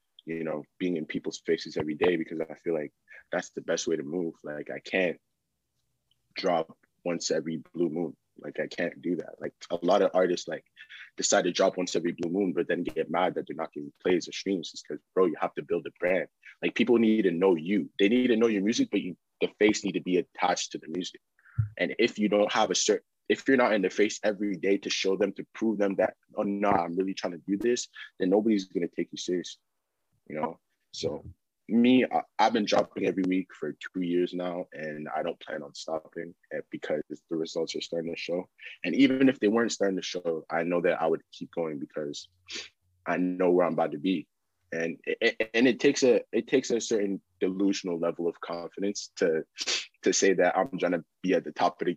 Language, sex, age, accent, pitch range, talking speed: English, male, 20-39, American, 85-105 Hz, 230 wpm